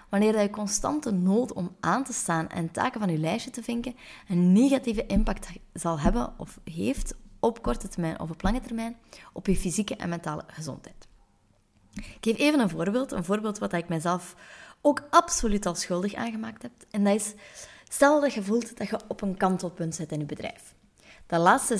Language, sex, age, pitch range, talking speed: Dutch, female, 20-39, 170-220 Hz, 190 wpm